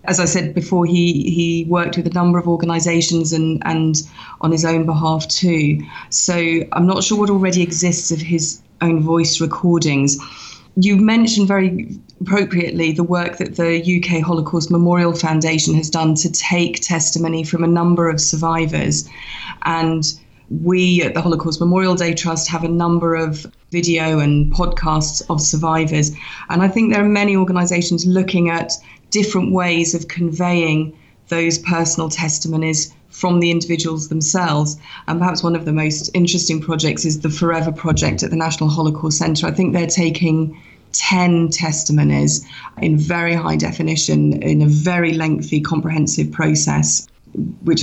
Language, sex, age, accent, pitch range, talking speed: English, female, 30-49, British, 155-175 Hz, 155 wpm